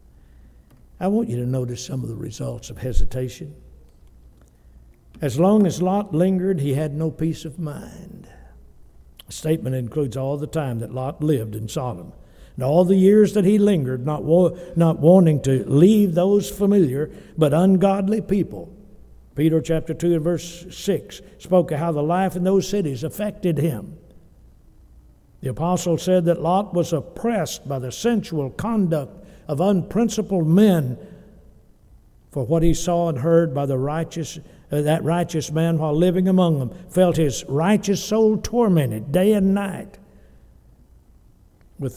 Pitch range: 120-180 Hz